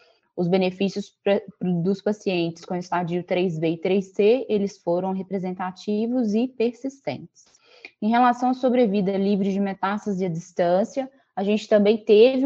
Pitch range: 200-245 Hz